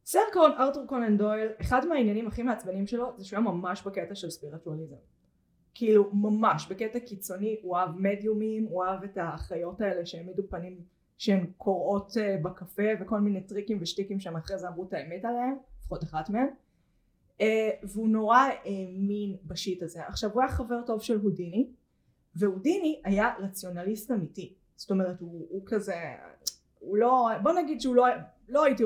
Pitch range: 190-240 Hz